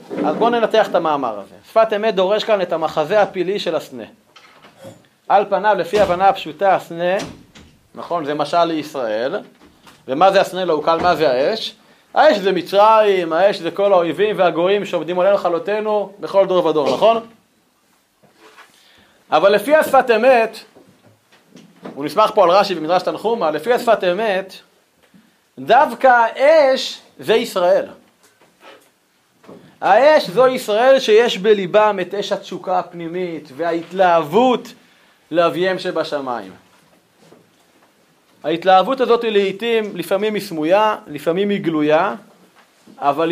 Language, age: Hebrew, 30-49